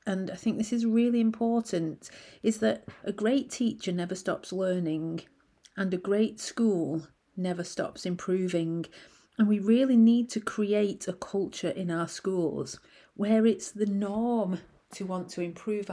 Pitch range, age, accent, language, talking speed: 175-215 Hz, 40-59, British, English, 155 wpm